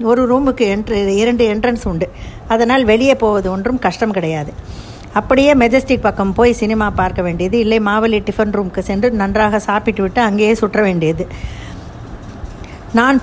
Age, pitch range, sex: 50-69, 195-240 Hz, female